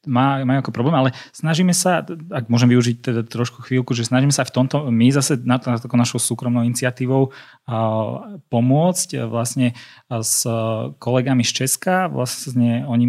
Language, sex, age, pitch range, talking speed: Slovak, male, 20-39, 115-135 Hz, 165 wpm